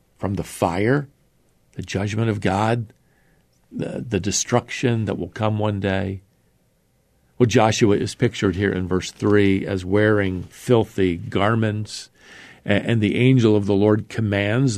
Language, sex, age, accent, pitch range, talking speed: English, male, 50-69, American, 100-130 Hz, 135 wpm